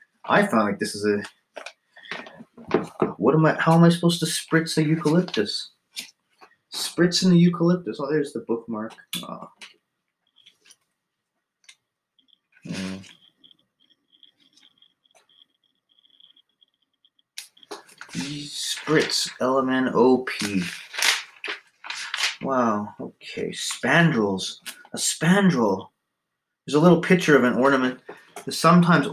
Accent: American